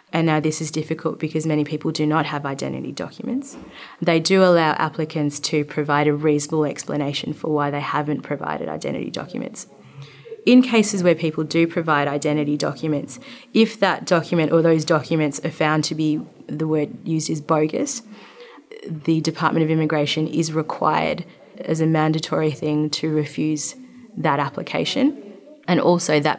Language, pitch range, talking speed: English, 150-170 Hz, 155 wpm